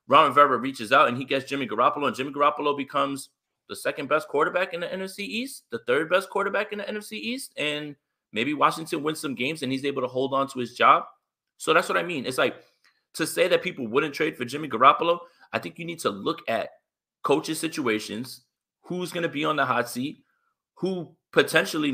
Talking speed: 215 wpm